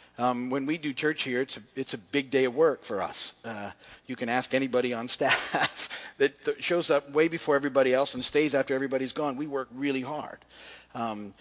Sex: male